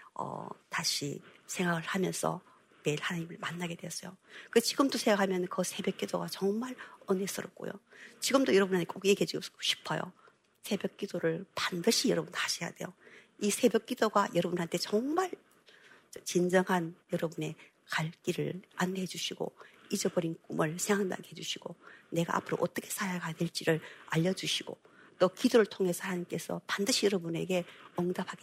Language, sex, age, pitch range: Korean, female, 50-69, 175-215 Hz